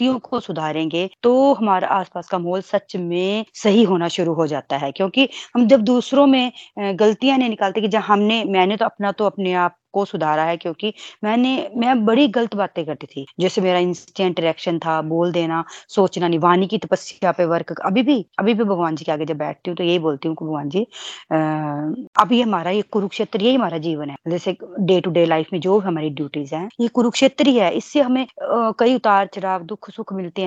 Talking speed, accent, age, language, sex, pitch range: 205 wpm, native, 20-39, Hindi, female, 175-220 Hz